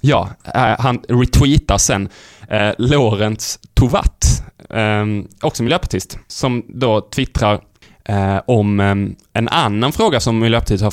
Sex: male